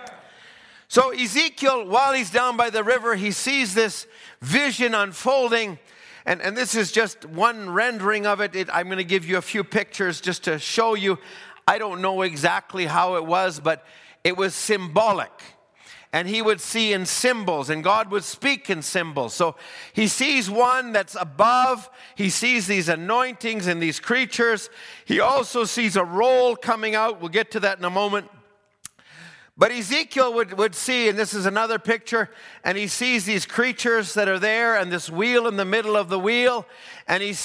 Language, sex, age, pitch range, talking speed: English, male, 50-69, 165-225 Hz, 185 wpm